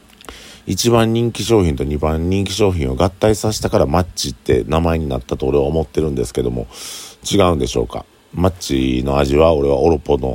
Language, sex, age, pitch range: Japanese, male, 50-69, 65-90 Hz